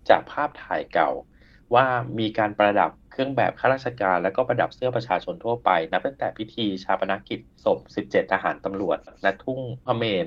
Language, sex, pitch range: Thai, male, 95-125 Hz